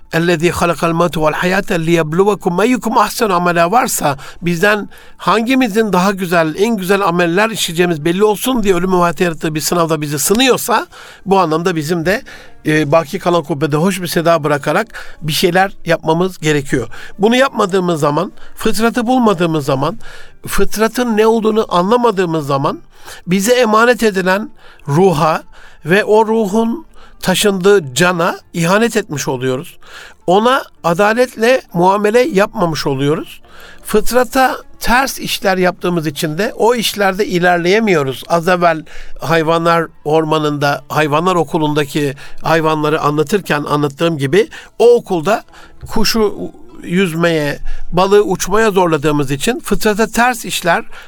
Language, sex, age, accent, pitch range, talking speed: Turkish, male, 60-79, native, 165-210 Hz, 110 wpm